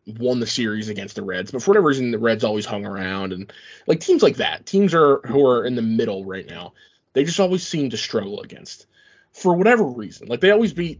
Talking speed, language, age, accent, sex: 235 wpm, English, 20-39, American, male